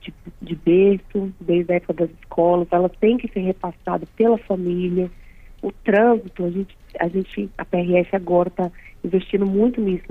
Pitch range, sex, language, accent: 185-215 Hz, female, Portuguese, Brazilian